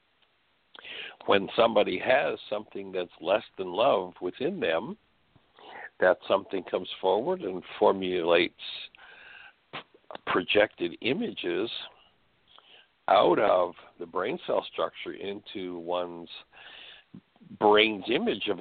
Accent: American